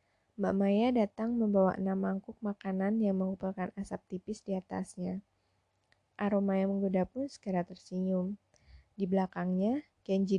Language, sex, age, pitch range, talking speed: Indonesian, female, 20-39, 180-215 Hz, 125 wpm